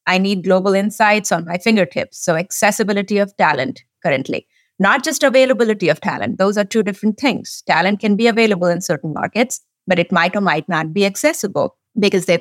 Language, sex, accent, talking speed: English, female, Indian, 190 wpm